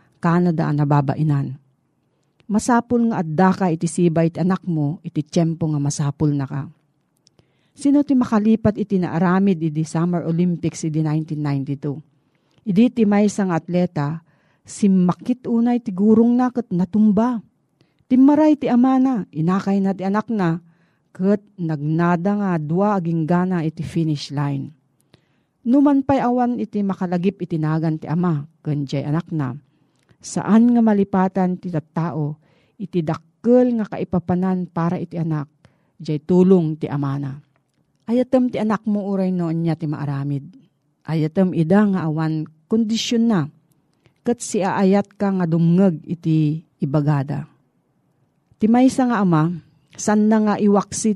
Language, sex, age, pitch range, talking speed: Filipino, female, 40-59, 155-205 Hz, 130 wpm